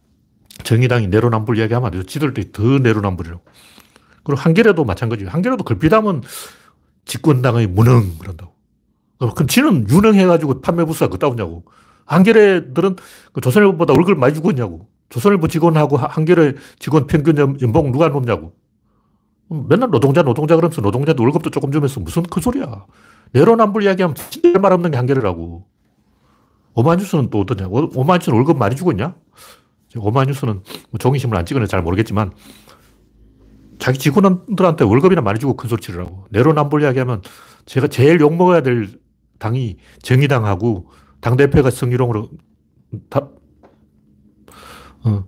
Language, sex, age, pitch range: Korean, male, 40-59, 105-155 Hz